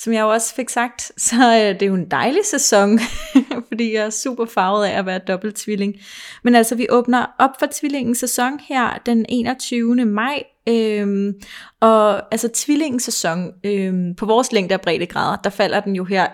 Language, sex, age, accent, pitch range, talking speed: Danish, female, 20-39, native, 200-235 Hz, 185 wpm